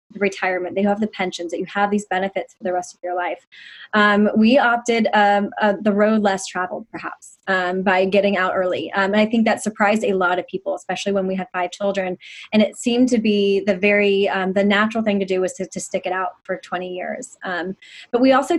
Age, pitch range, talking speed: 20-39, 185-215 Hz, 230 wpm